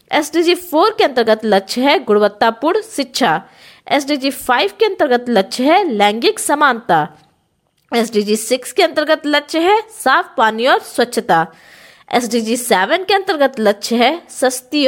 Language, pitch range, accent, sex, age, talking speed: Hindi, 210-315 Hz, native, female, 20-39, 145 wpm